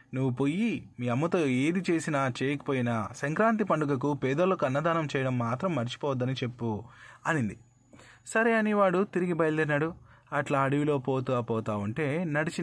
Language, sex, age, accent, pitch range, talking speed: Telugu, male, 20-39, native, 125-165 Hz, 125 wpm